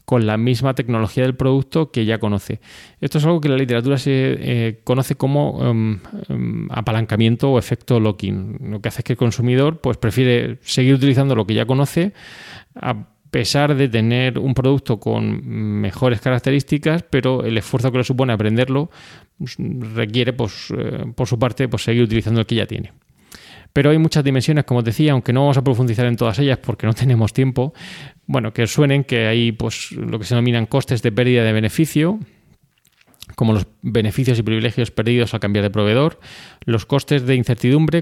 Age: 20-39